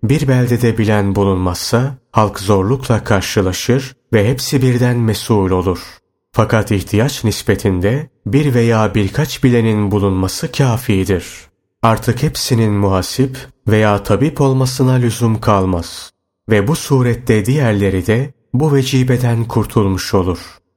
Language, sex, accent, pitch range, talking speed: Turkish, male, native, 100-130 Hz, 110 wpm